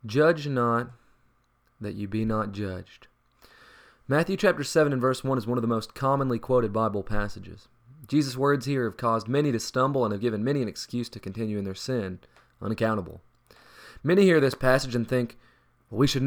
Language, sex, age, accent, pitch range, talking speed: English, male, 20-39, American, 110-140 Hz, 185 wpm